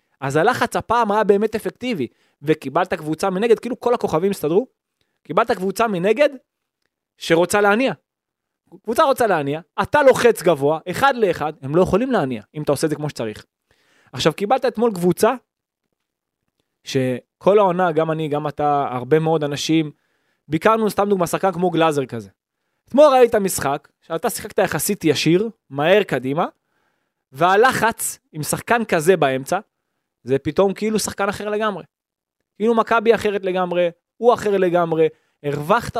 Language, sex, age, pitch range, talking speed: Hebrew, male, 20-39, 155-215 Hz, 140 wpm